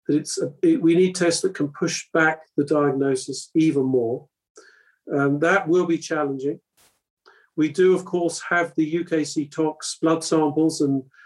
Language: English